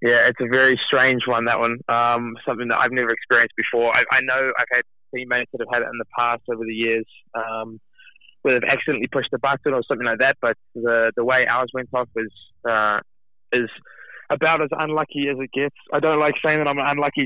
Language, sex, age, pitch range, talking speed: English, male, 20-39, 110-130 Hz, 235 wpm